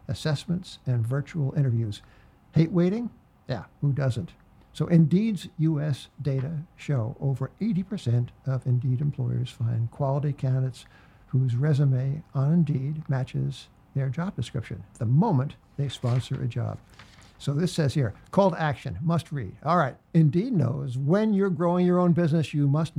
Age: 60-79